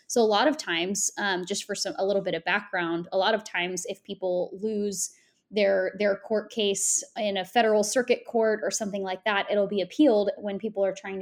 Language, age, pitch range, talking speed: English, 10-29, 185-220 Hz, 220 wpm